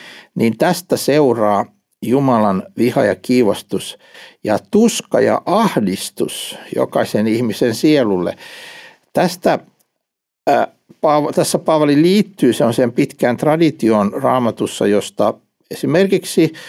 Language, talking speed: Finnish, 100 wpm